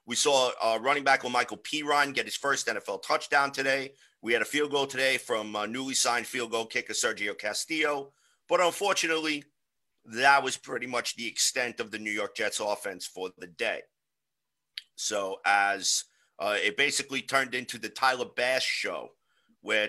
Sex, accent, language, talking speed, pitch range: male, American, English, 175 wpm, 110-140 Hz